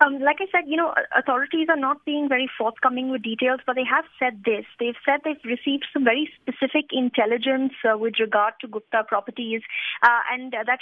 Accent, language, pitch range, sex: Indian, English, 225-260 Hz, female